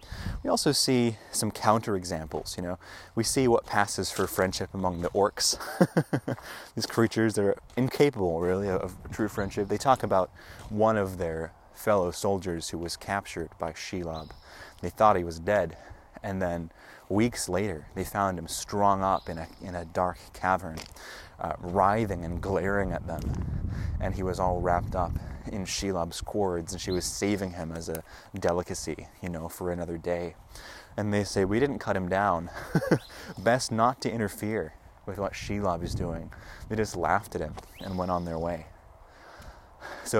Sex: male